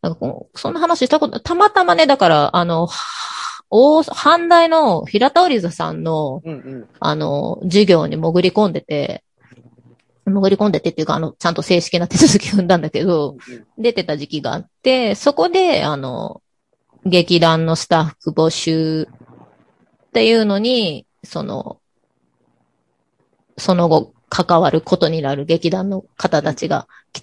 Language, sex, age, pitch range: Japanese, female, 20-39, 160-230 Hz